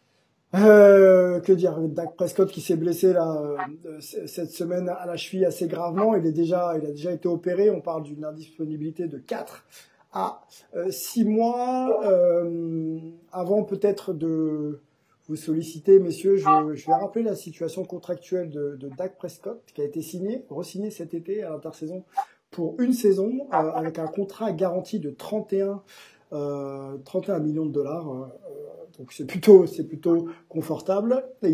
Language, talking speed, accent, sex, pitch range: French, 160 wpm, French, male, 155-200 Hz